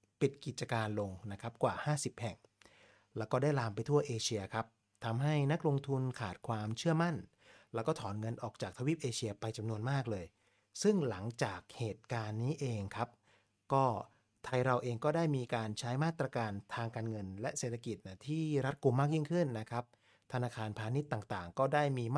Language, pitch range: Thai, 105-140 Hz